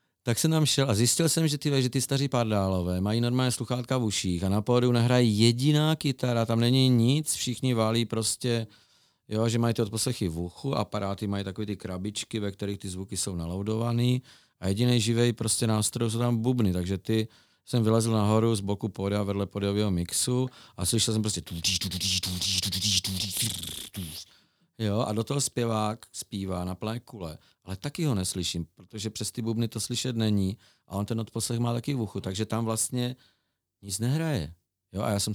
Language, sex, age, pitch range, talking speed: Czech, male, 40-59, 95-120 Hz, 185 wpm